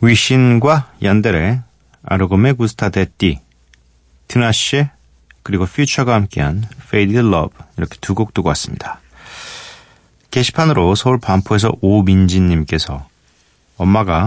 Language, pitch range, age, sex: Korean, 90-125 Hz, 40-59, male